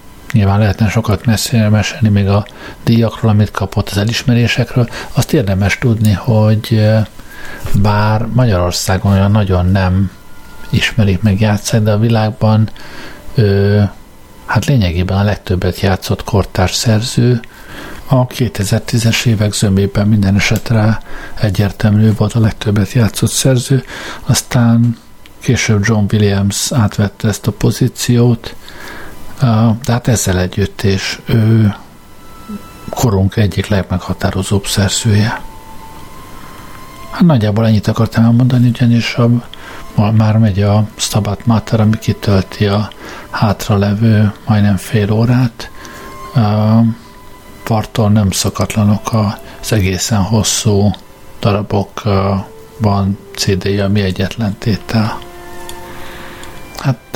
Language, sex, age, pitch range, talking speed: Hungarian, male, 50-69, 100-115 Hz, 105 wpm